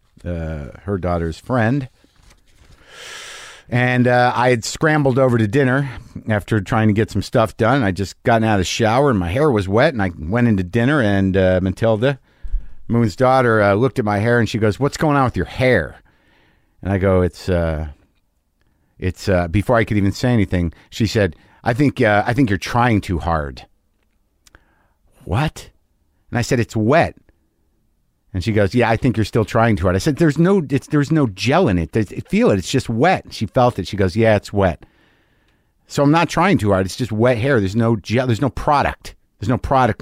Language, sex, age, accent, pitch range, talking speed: English, male, 50-69, American, 95-125 Hz, 205 wpm